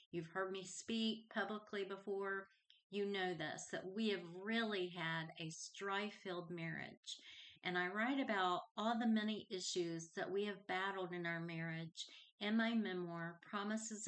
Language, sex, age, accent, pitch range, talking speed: English, female, 40-59, American, 180-210 Hz, 155 wpm